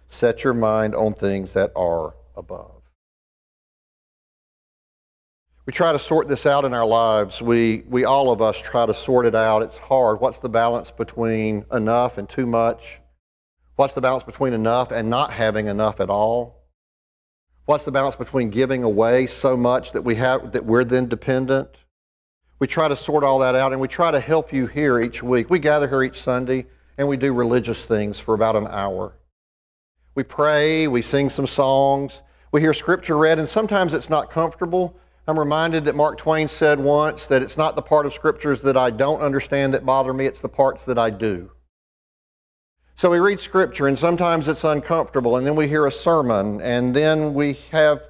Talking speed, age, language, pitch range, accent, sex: 190 wpm, 40-59, English, 110-145 Hz, American, male